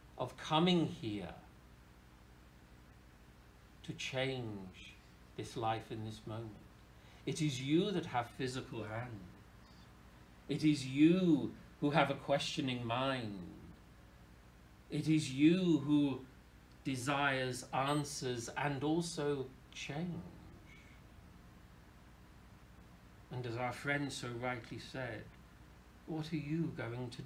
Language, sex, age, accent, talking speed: English, male, 60-79, British, 100 wpm